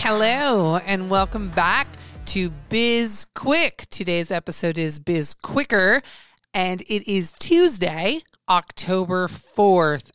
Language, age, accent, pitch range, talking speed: English, 30-49, American, 155-185 Hz, 105 wpm